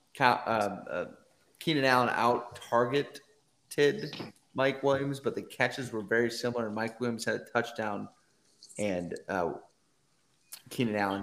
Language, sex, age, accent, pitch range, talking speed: English, male, 30-49, American, 110-125 Hz, 125 wpm